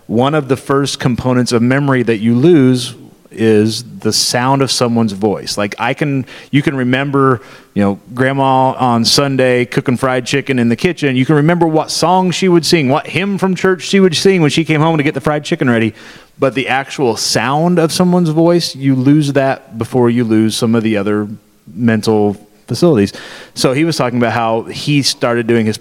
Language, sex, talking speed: English, male, 200 wpm